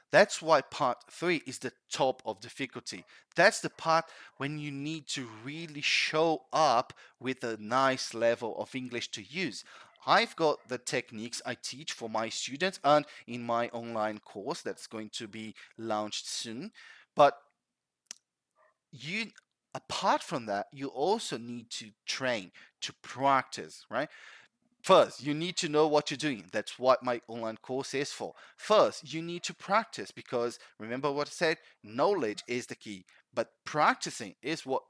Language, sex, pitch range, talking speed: English, male, 115-155 Hz, 160 wpm